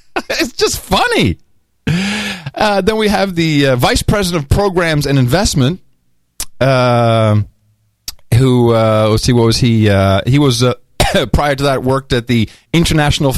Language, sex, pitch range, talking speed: English, male, 95-135 Hz, 150 wpm